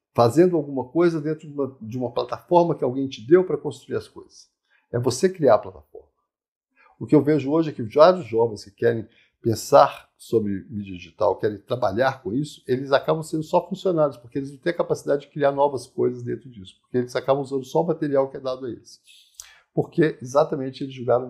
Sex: male